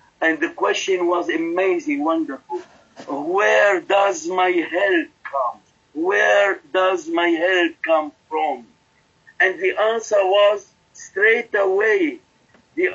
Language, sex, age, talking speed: English, male, 50-69, 110 wpm